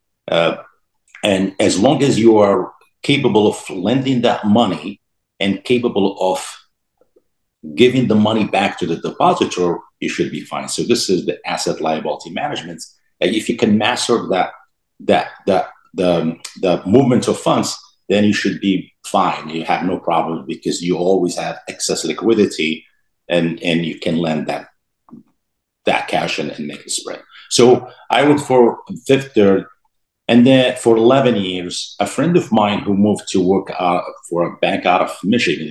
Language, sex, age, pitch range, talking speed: English, male, 50-69, 85-105 Hz, 165 wpm